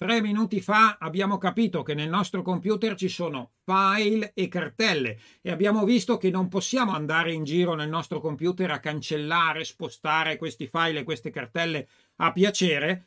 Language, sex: Italian, male